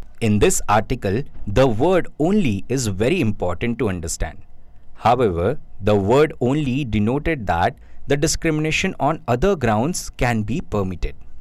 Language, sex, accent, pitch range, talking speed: English, male, Indian, 95-140 Hz, 130 wpm